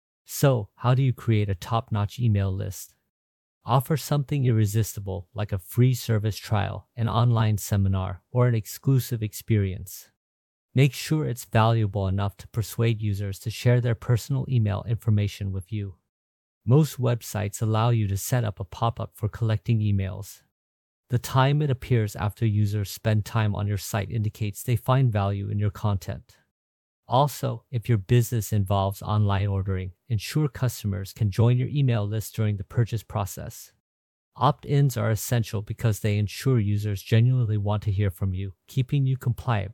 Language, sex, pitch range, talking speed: English, male, 100-120 Hz, 160 wpm